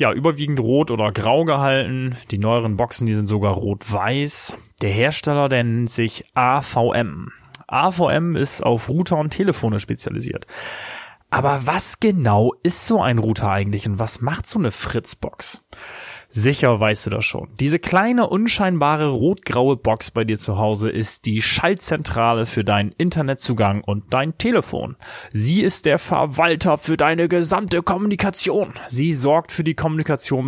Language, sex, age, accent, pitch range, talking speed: German, male, 30-49, German, 110-150 Hz, 150 wpm